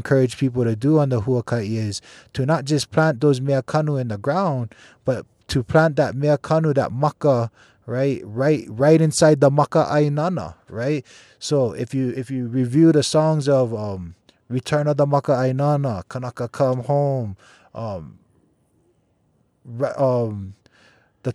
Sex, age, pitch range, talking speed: male, 20-39, 120-150 Hz, 155 wpm